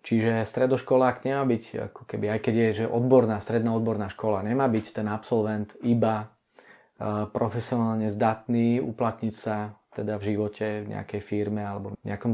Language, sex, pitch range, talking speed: Czech, male, 110-125 Hz, 150 wpm